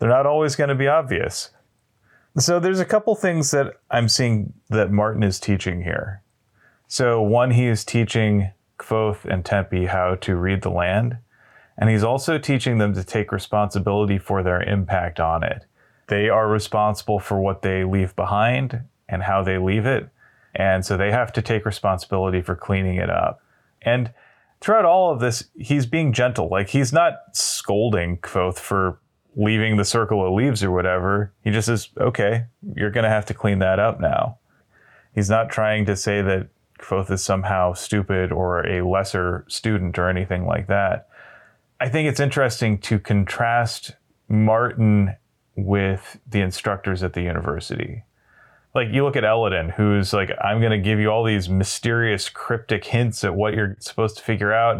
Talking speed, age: 175 wpm, 30-49